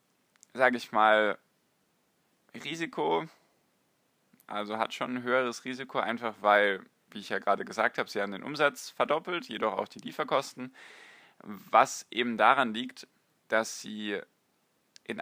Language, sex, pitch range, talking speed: German, male, 100-125 Hz, 135 wpm